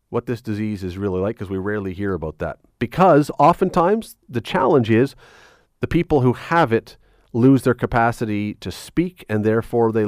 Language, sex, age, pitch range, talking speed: English, male, 40-59, 105-125 Hz, 180 wpm